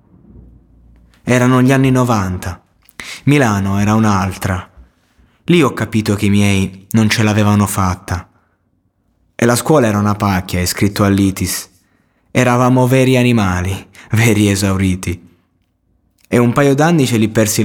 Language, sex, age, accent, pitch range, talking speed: Italian, male, 20-39, native, 95-115 Hz, 130 wpm